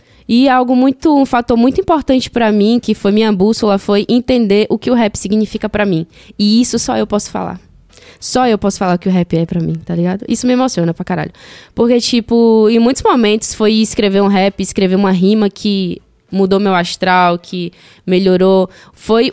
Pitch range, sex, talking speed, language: 175-220 Hz, female, 200 wpm, Portuguese